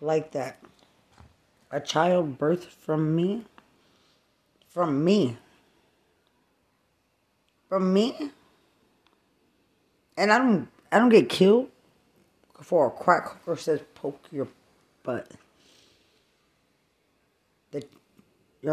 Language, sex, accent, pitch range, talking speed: English, female, American, 135-180 Hz, 85 wpm